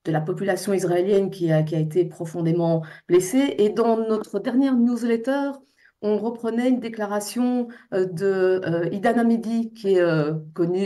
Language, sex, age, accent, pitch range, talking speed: French, female, 50-69, French, 190-245 Hz, 155 wpm